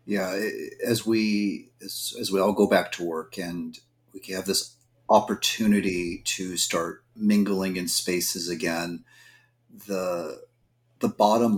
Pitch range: 90-115 Hz